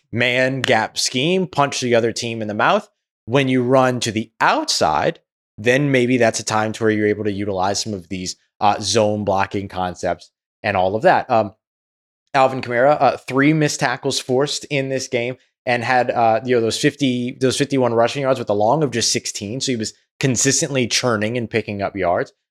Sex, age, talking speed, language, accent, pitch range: male, 20-39, 200 wpm, English, American, 105-135 Hz